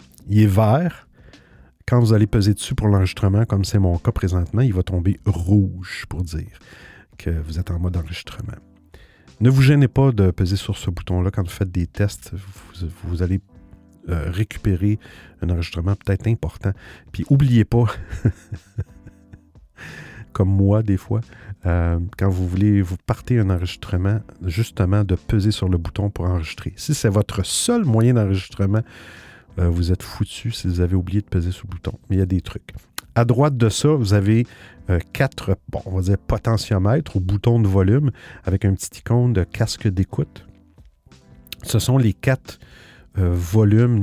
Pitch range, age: 90-110 Hz, 50-69